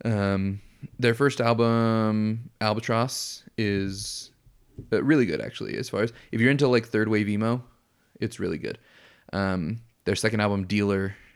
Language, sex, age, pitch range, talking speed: English, male, 30-49, 100-115 Hz, 145 wpm